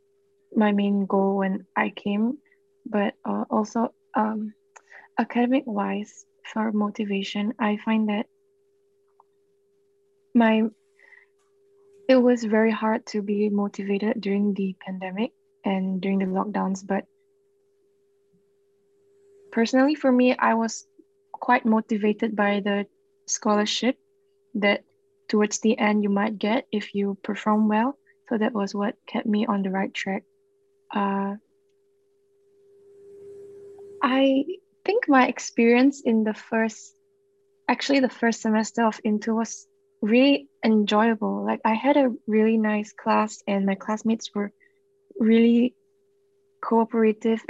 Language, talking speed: English, 120 wpm